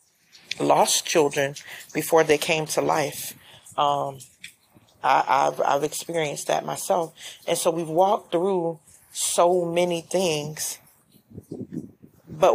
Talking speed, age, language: 110 wpm, 40-59, English